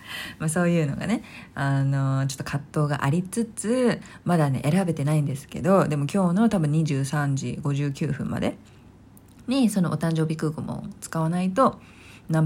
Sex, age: female, 40-59